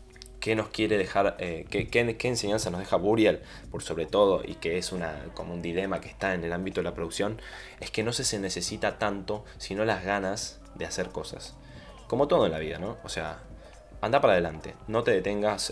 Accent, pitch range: Argentinian, 85-105 Hz